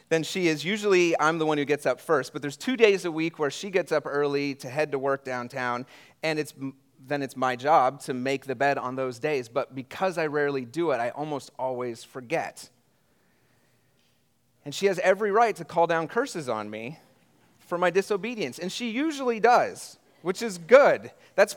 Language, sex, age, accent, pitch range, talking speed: English, male, 30-49, American, 125-170 Hz, 200 wpm